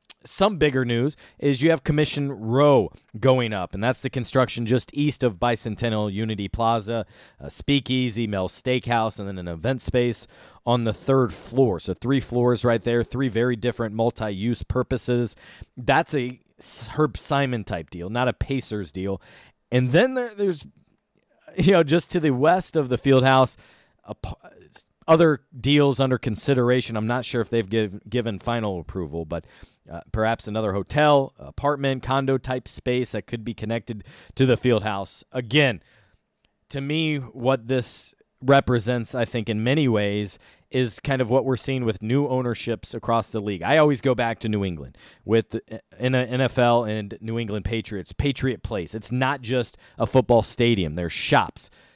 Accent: American